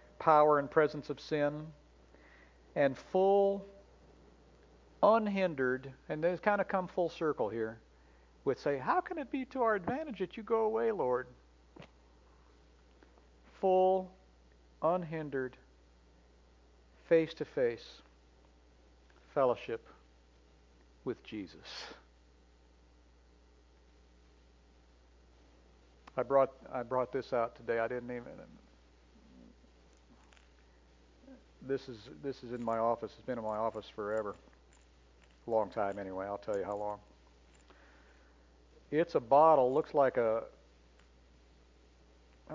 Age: 60-79